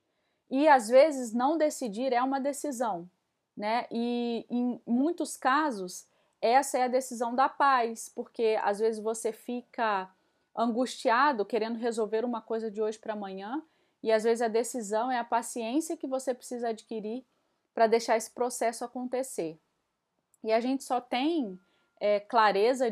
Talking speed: 150 wpm